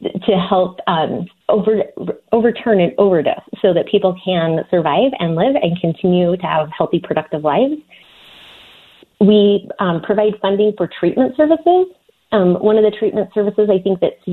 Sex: female